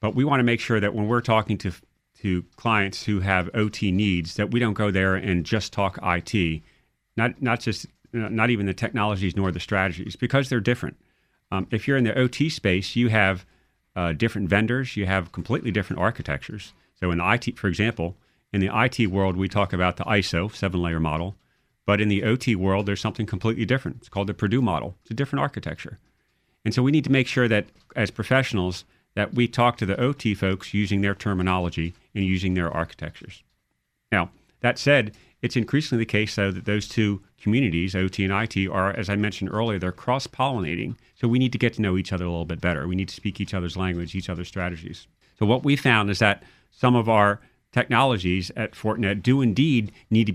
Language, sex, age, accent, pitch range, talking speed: English, male, 40-59, American, 95-120 Hz, 210 wpm